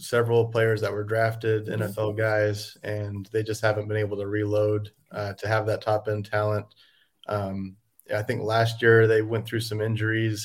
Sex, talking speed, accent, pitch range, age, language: male, 185 wpm, American, 105-115 Hz, 30-49, English